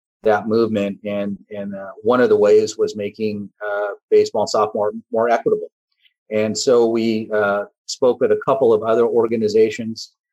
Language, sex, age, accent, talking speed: English, male, 40-59, American, 155 wpm